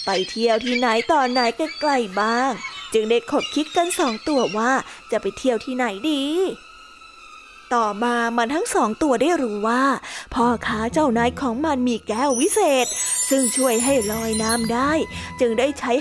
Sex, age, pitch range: female, 20-39, 235-290 Hz